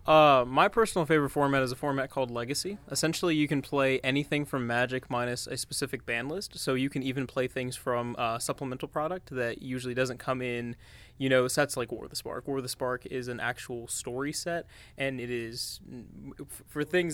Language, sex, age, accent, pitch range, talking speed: English, male, 20-39, American, 125-145 Hz, 205 wpm